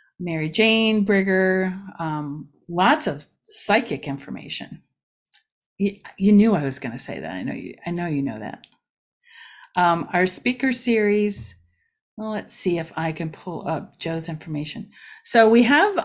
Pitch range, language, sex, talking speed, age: 165-215 Hz, English, female, 155 wpm, 50-69